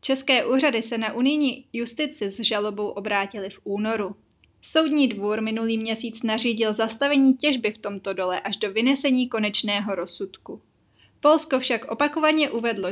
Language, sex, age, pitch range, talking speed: Czech, female, 20-39, 205-265 Hz, 140 wpm